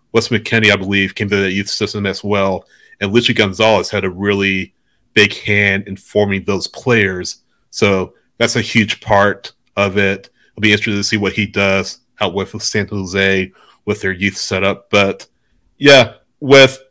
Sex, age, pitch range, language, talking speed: male, 30-49, 95-115 Hz, English, 175 wpm